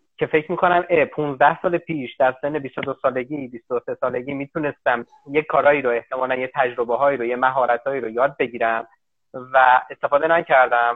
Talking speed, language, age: 155 wpm, Persian, 30-49